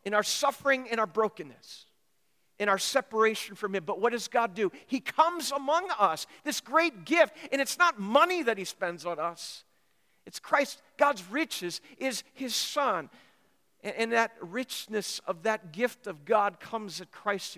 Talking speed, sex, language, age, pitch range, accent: 170 wpm, male, English, 50-69, 165-220 Hz, American